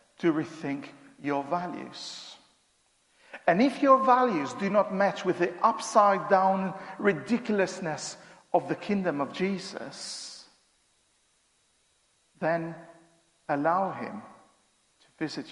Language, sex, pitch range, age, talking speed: English, male, 165-225 Hz, 50-69, 95 wpm